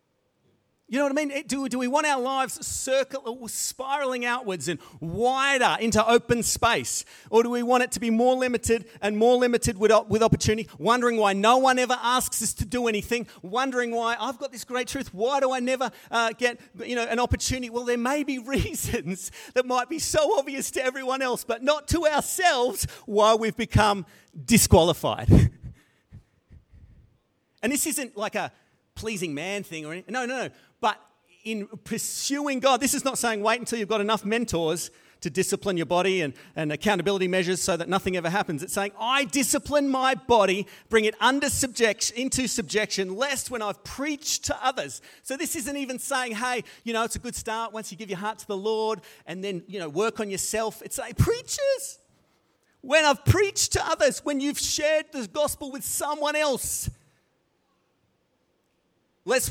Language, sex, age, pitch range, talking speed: English, male, 40-59, 205-265 Hz, 185 wpm